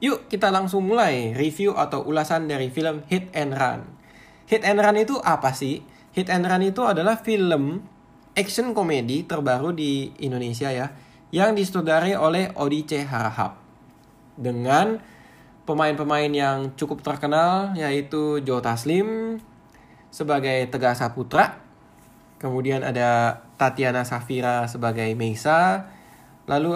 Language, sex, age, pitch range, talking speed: Indonesian, male, 10-29, 120-160 Hz, 120 wpm